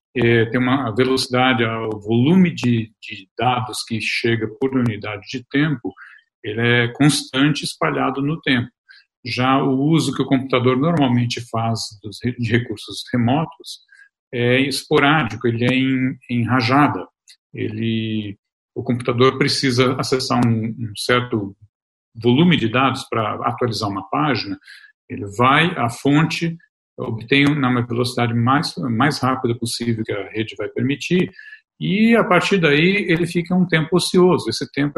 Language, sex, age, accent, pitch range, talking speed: Portuguese, male, 50-69, Brazilian, 120-145 Hz, 140 wpm